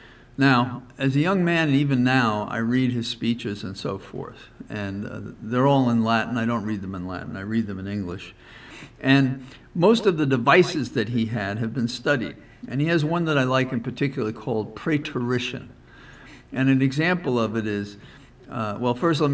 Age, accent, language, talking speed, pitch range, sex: 50-69, American, English, 200 wpm, 115-140 Hz, male